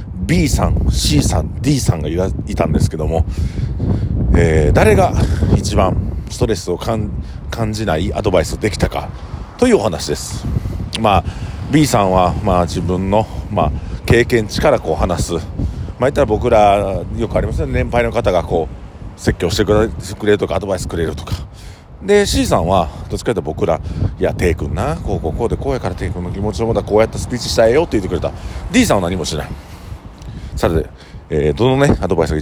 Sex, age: male, 50-69